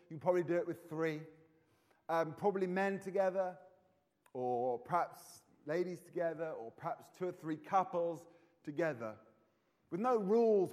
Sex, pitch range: male, 150-180 Hz